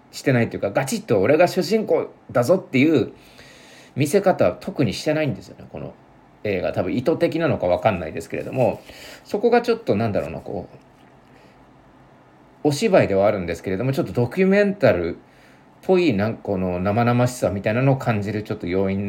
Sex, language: male, Japanese